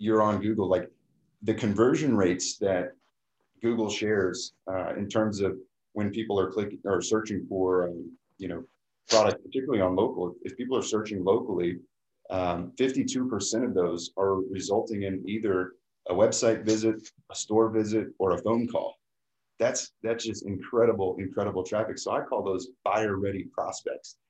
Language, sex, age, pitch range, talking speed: English, male, 30-49, 95-115 Hz, 160 wpm